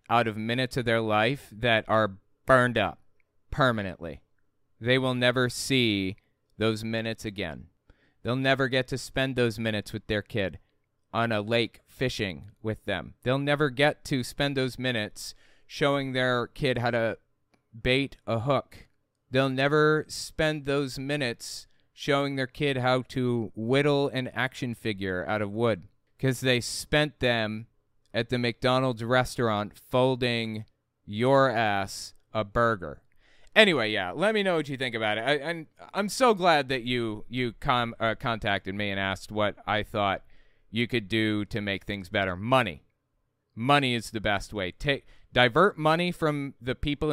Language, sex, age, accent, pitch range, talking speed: English, male, 30-49, American, 105-135 Hz, 160 wpm